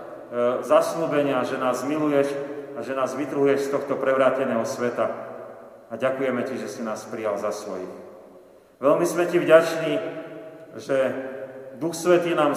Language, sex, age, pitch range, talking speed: Slovak, male, 40-59, 130-155 Hz, 140 wpm